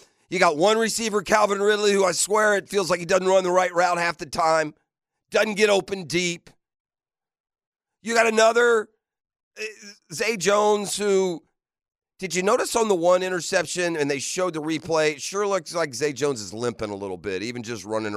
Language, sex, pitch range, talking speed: English, male, 155-215 Hz, 185 wpm